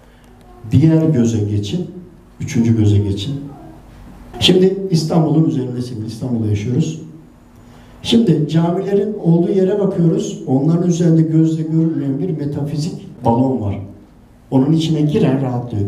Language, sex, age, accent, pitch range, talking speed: Turkish, male, 60-79, native, 120-170 Hz, 110 wpm